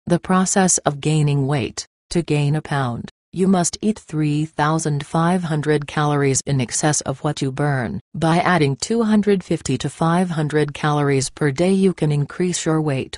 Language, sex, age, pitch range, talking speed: English, female, 40-59, 140-165 Hz, 150 wpm